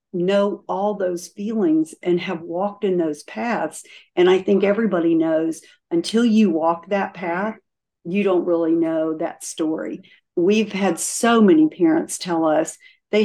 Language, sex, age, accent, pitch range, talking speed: English, female, 50-69, American, 170-235 Hz, 155 wpm